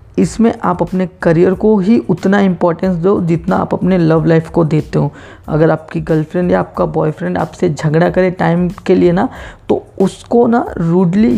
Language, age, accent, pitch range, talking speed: Hindi, 20-39, native, 170-210 Hz, 180 wpm